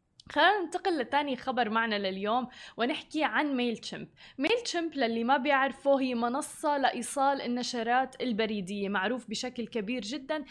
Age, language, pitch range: 20-39, Arabic, 235-290 Hz